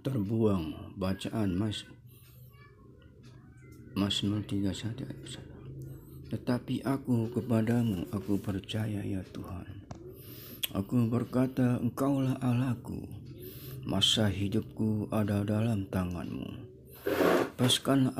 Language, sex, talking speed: Indonesian, male, 75 wpm